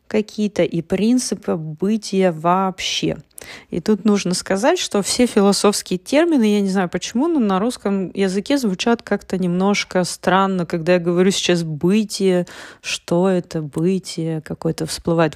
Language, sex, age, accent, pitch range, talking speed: Russian, female, 30-49, native, 175-230 Hz, 135 wpm